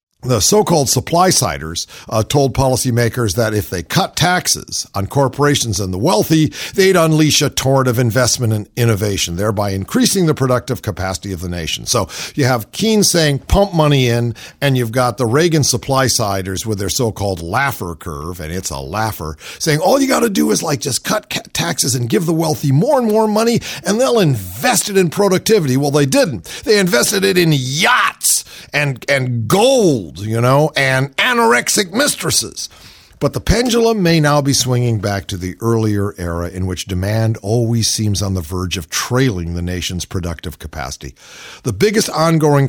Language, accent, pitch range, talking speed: English, American, 105-160 Hz, 175 wpm